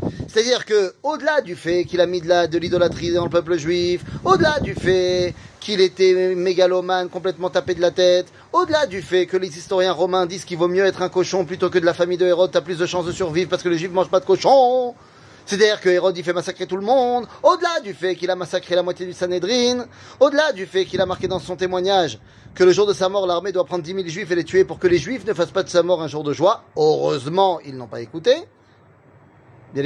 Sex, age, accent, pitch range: male, 30-49, French, 175-240 Hz